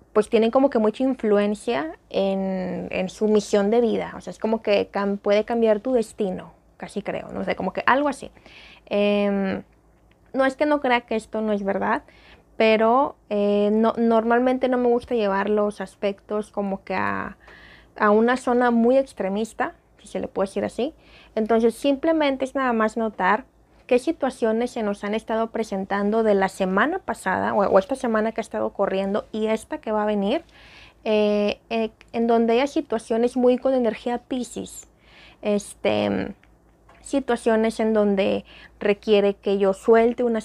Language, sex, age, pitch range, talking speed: Spanish, female, 20-39, 200-240 Hz, 170 wpm